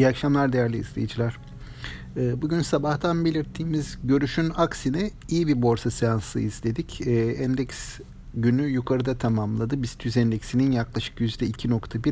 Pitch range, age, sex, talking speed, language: 120-150 Hz, 50-69, male, 105 wpm, Turkish